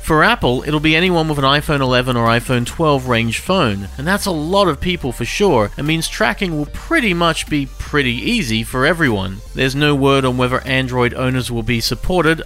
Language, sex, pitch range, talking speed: English, male, 120-180 Hz, 205 wpm